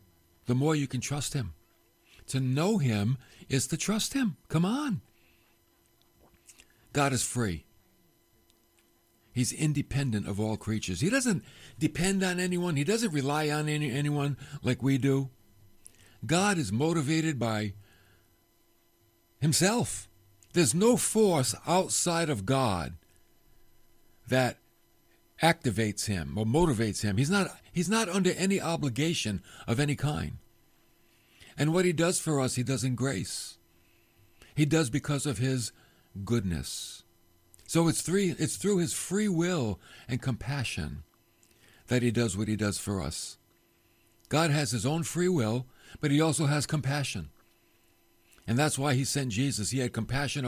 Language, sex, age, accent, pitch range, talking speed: English, male, 60-79, American, 110-155 Hz, 140 wpm